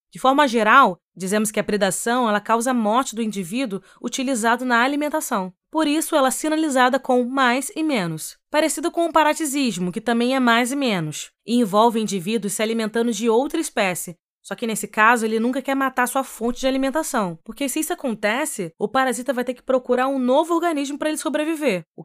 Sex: female